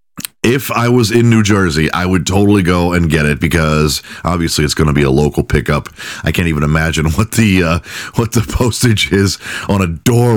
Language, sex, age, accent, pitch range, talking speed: English, male, 40-59, American, 85-120 Hz, 210 wpm